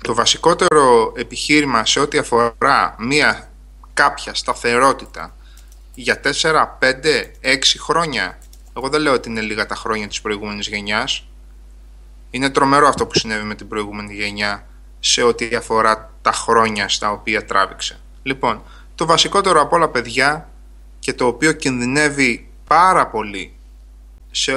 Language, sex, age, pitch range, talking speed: Greek, male, 20-39, 105-140 Hz, 135 wpm